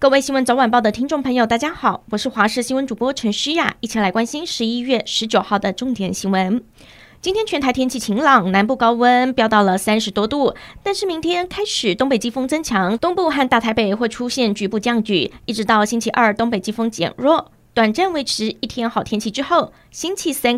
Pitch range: 215-275 Hz